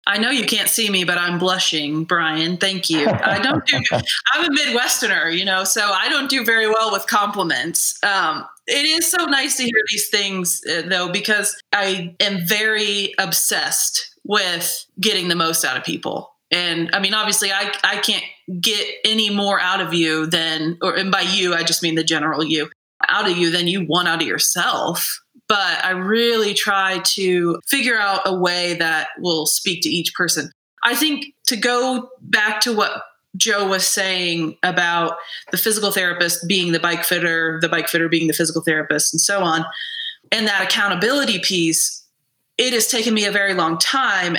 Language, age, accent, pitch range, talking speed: English, 30-49, American, 170-215 Hz, 190 wpm